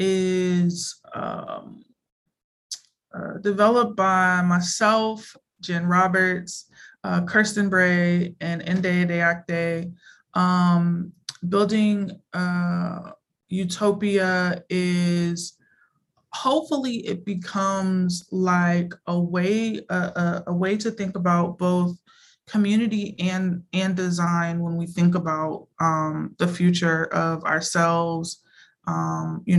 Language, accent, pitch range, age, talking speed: English, American, 165-190 Hz, 20-39, 95 wpm